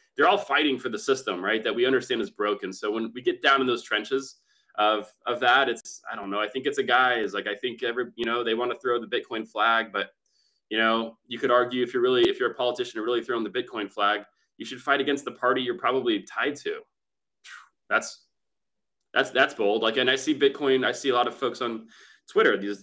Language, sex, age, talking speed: English, male, 20-39, 245 wpm